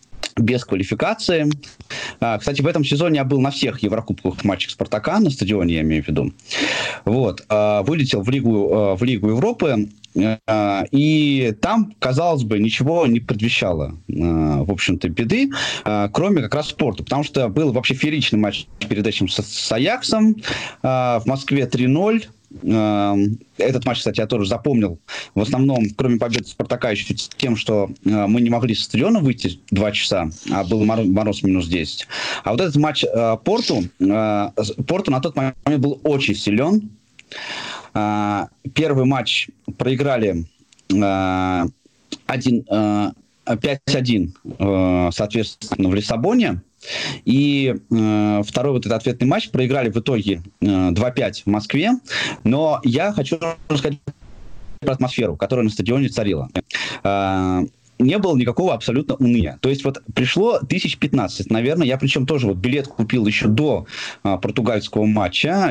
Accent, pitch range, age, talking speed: native, 105-140 Hz, 20-39, 135 wpm